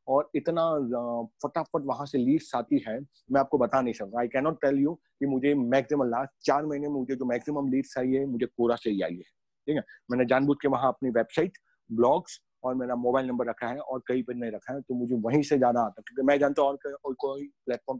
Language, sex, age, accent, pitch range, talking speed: Hindi, male, 30-49, native, 120-140 Hz, 235 wpm